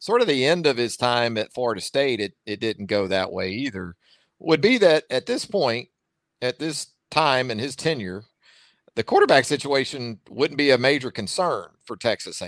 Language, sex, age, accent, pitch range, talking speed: English, male, 50-69, American, 110-145 Hz, 190 wpm